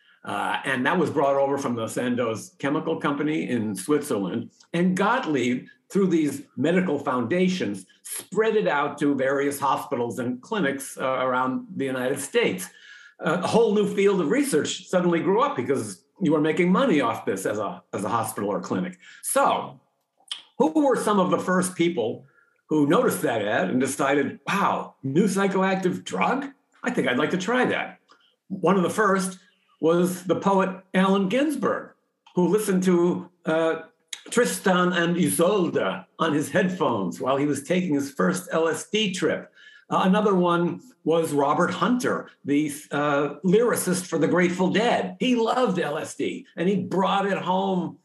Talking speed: 160 wpm